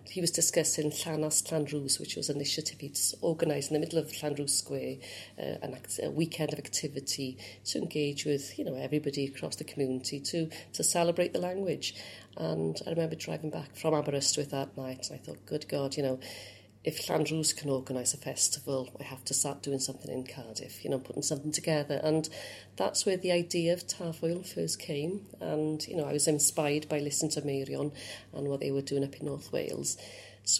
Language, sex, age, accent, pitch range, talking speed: English, female, 40-59, British, 135-170 Hz, 200 wpm